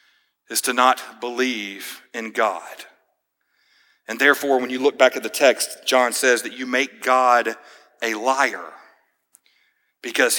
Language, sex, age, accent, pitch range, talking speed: English, male, 40-59, American, 120-135 Hz, 140 wpm